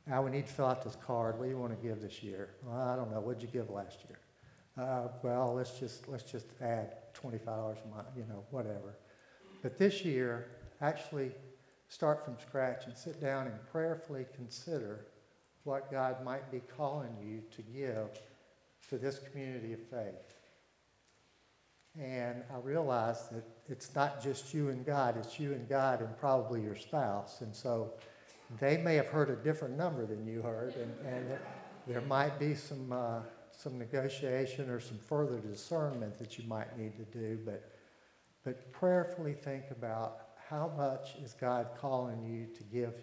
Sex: male